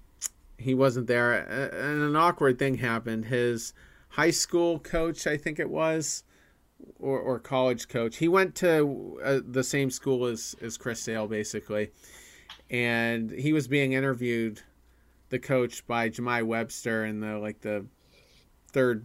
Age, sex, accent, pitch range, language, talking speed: 30-49, male, American, 105-130 Hz, English, 150 wpm